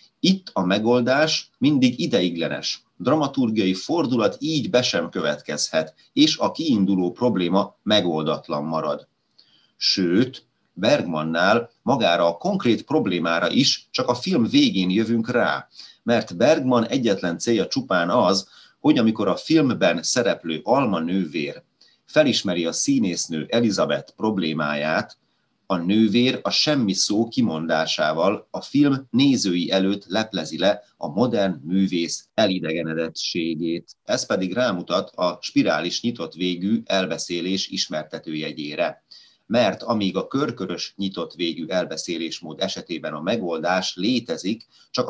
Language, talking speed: Hungarian, 115 wpm